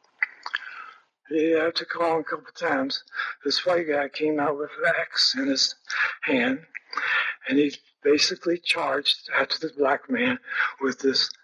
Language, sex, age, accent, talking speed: English, male, 60-79, American, 155 wpm